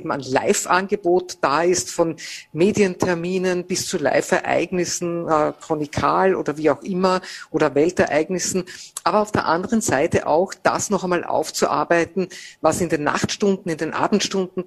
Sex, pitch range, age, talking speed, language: female, 155-185 Hz, 50-69, 145 wpm, German